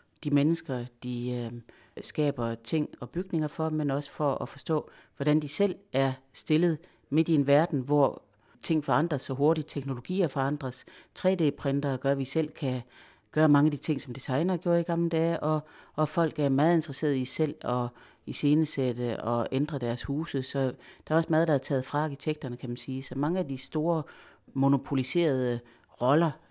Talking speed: 185 wpm